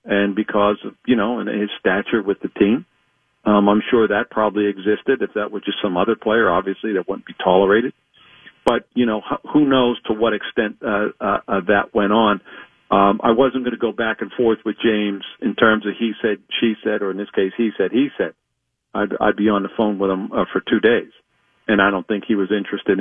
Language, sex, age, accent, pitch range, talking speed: English, male, 50-69, American, 100-110 Hz, 230 wpm